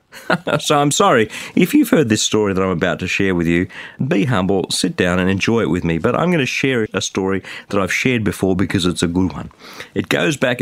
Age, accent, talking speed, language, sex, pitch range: 40-59, Australian, 245 wpm, English, male, 95-130 Hz